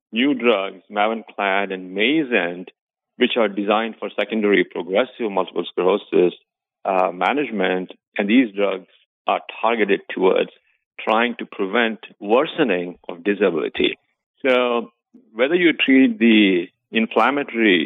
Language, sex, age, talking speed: English, male, 50-69, 110 wpm